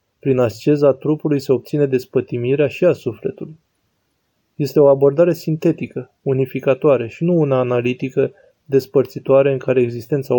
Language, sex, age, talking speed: Romanian, male, 20-39, 125 wpm